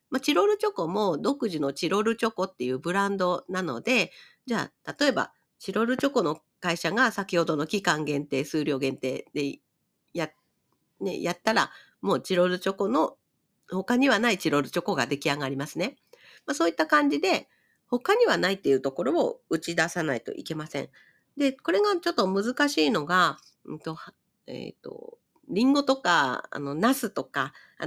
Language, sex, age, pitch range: Japanese, female, 50-69, 160-260 Hz